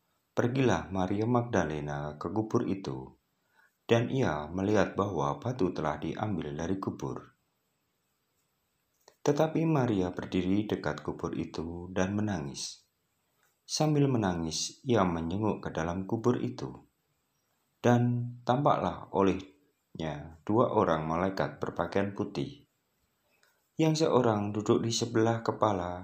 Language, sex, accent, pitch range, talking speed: Indonesian, male, native, 85-120 Hz, 105 wpm